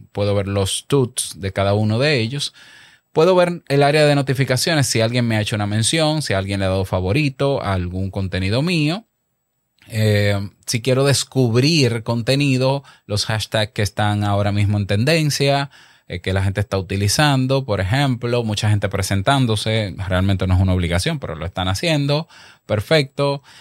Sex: male